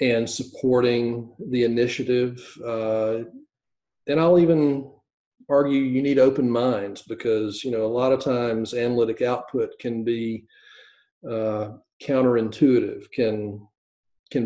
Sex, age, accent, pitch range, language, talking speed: male, 40-59, American, 115-130 Hz, English, 115 wpm